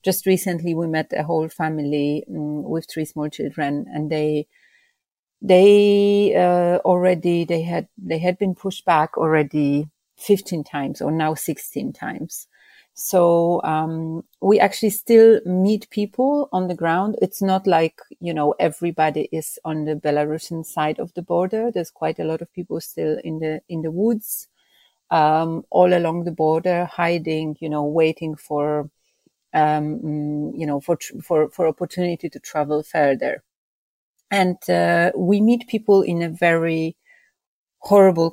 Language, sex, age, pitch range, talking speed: Danish, female, 40-59, 150-180 Hz, 150 wpm